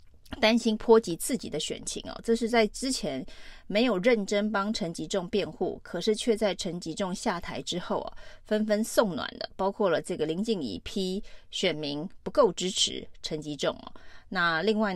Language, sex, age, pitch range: Chinese, female, 30-49, 175-225 Hz